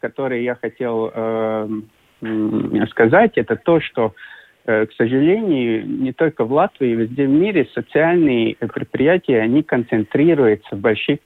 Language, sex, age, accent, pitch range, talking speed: Russian, male, 50-69, native, 110-150 Hz, 130 wpm